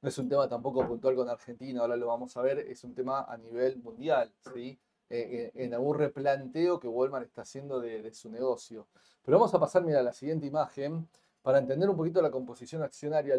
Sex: male